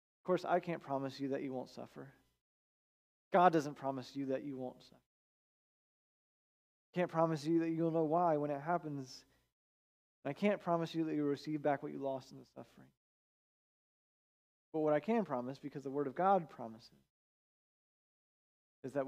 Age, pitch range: 30-49, 115-155 Hz